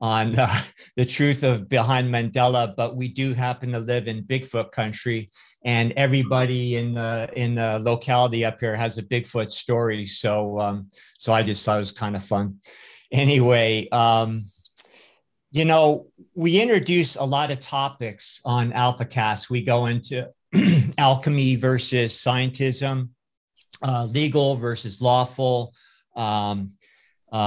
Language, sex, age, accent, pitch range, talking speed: English, male, 50-69, American, 115-130 Hz, 140 wpm